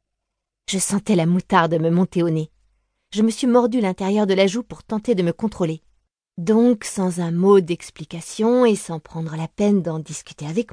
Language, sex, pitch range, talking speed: French, female, 135-195 Hz, 190 wpm